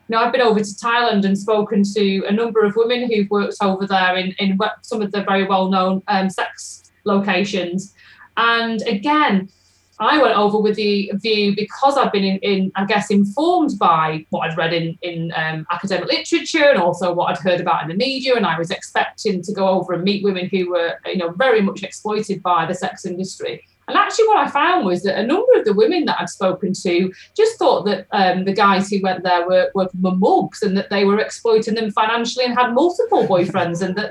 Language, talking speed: English, 215 wpm